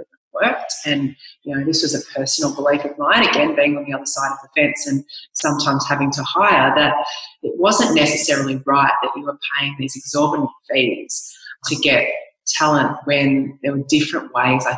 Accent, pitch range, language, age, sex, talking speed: Australian, 140-160 Hz, English, 30-49, female, 190 wpm